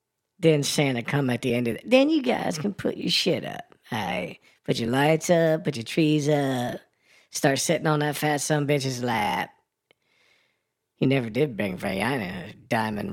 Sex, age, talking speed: female, 40-59, 195 wpm